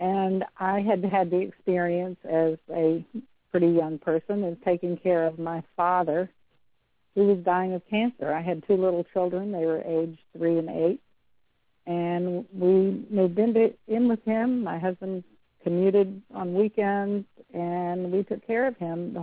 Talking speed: 160 wpm